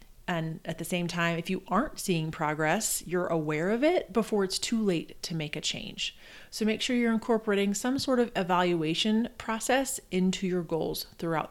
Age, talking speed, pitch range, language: 30-49, 190 wpm, 170-215 Hz, English